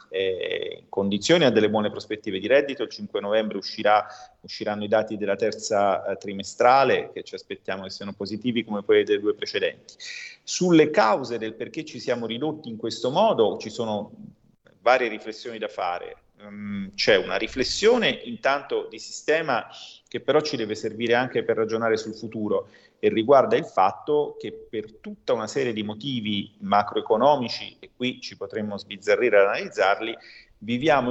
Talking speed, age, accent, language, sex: 155 wpm, 30-49, native, Italian, male